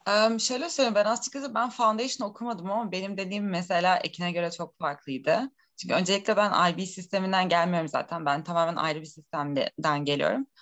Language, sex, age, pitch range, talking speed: Turkish, female, 20-39, 180-225 Hz, 170 wpm